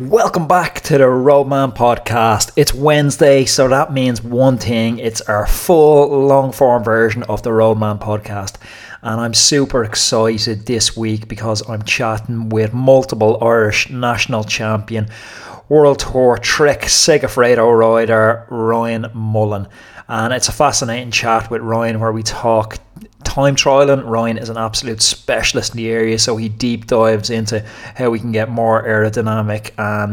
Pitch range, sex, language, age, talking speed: 110-130 Hz, male, English, 30-49, 150 wpm